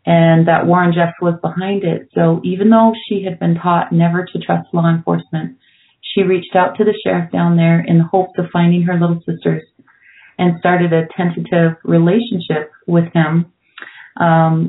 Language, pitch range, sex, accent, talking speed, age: English, 165-195 Hz, female, American, 175 wpm, 30-49